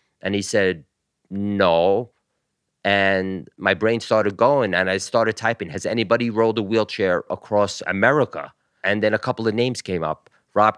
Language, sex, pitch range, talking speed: English, male, 95-120 Hz, 160 wpm